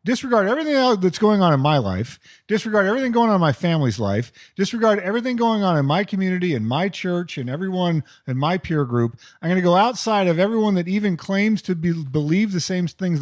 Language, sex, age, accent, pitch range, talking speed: English, male, 40-59, American, 140-200 Hz, 215 wpm